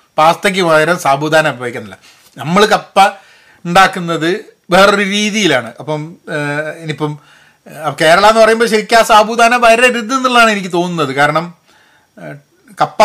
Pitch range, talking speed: 150-190 Hz, 100 wpm